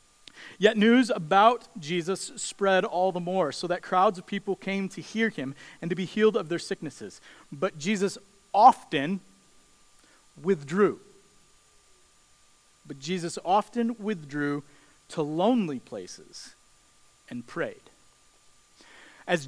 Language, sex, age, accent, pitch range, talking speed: English, male, 40-59, American, 170-215 Hz, 115 wpm